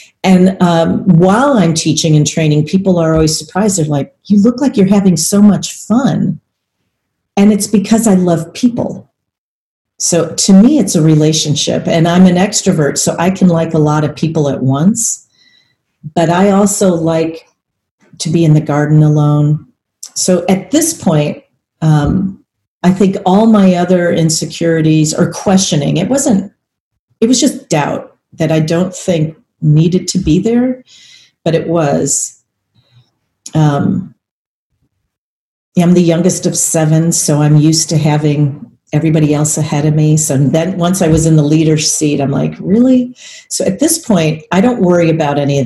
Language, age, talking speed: English, 40-59, 165 wpm